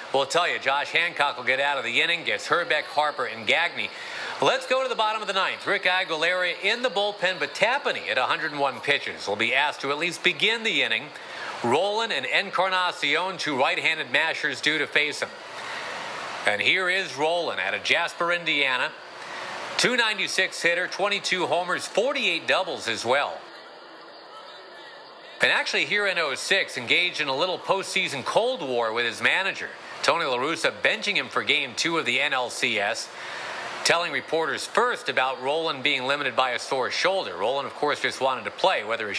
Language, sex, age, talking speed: English, male, 40-59, 175 wpm